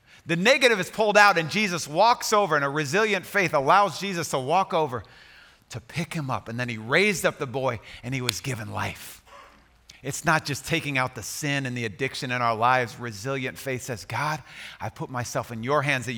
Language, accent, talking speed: English, American, 215 wpm